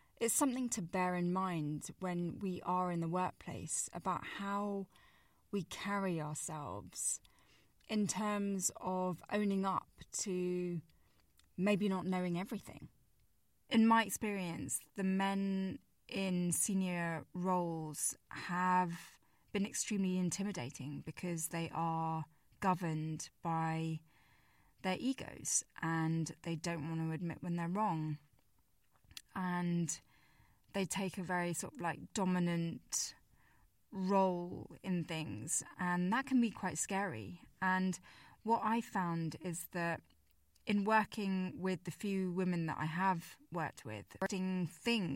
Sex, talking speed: female, 120 wpm